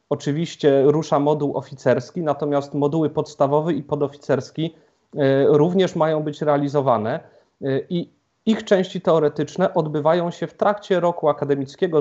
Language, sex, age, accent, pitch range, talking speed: Polish, male, 30-49, native, 135-165 Hz, 115 wpm